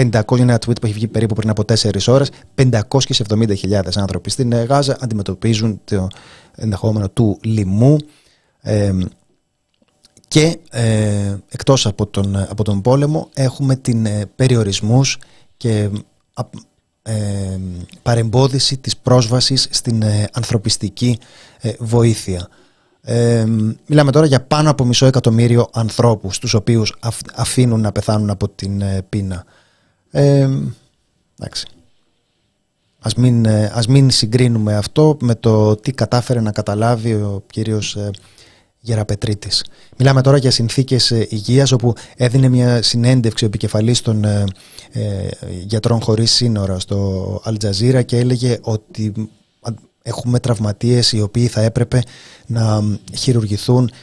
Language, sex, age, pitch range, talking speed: Greek, male, 30-49, 105-125 Hz, 120 wpm